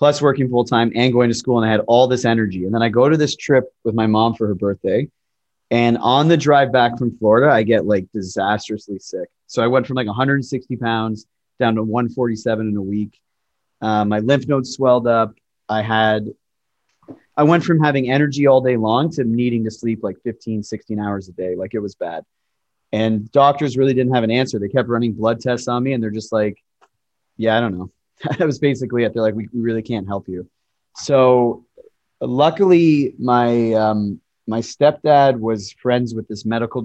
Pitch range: 110-130 Hz